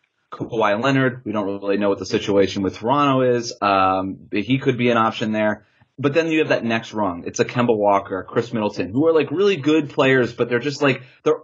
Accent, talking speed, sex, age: American, 225 wpm, male, 30-49